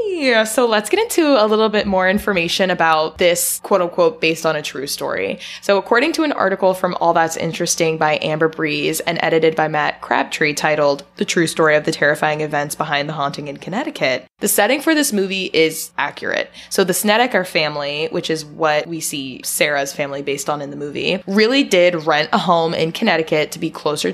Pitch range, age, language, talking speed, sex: 155-200 Hz, 20-39, English, 205 wpm, female